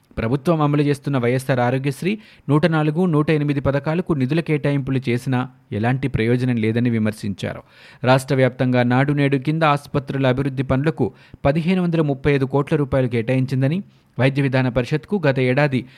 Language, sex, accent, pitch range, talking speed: Telugu, male, native, 125-150 Hz, 110 wpm